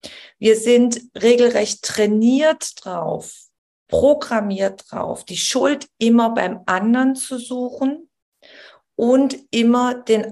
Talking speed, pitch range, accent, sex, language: 100 wpm, 190-235 Hz, German, female, German